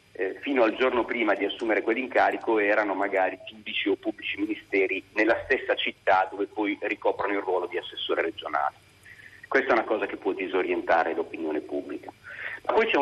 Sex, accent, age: male, native, 40-59